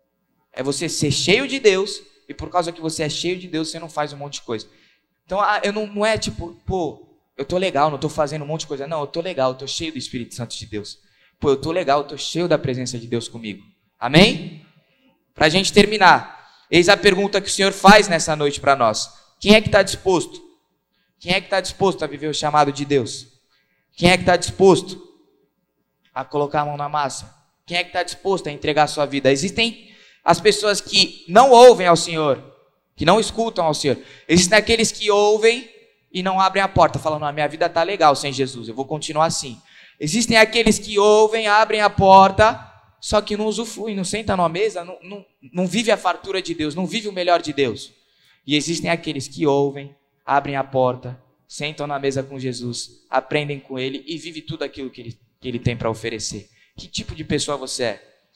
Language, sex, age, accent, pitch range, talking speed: Portuguese, male, 20-39, Brazilian, 140-195 Hz, 220 wpm